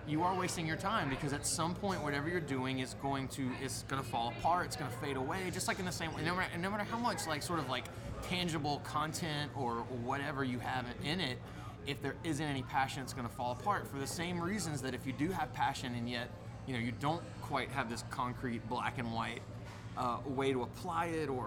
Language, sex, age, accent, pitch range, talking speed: English, male, 20-39, American, 120-145 Hz, 245 wpm